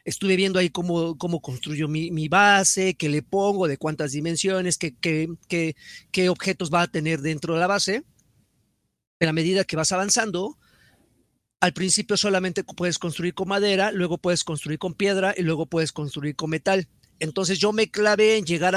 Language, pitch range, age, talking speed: Spanish, 175-230 Hz, 40-59, 180 wpm